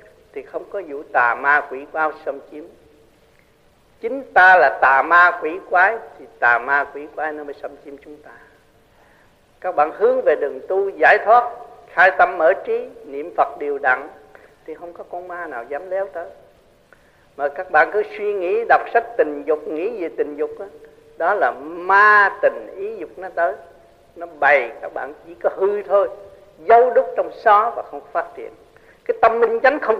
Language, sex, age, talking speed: Vietnamese, male, 50-69, 195 wpm